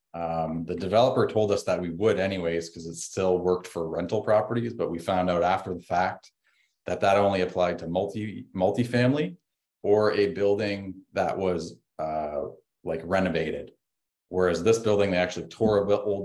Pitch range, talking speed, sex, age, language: 85-95 Hz, 175 wpm, male, 30-49, English